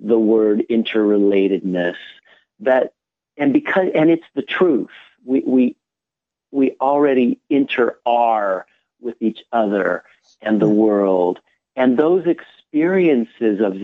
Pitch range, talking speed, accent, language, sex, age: 115-140 Hz, 115 wpm, American, English, male, 50-69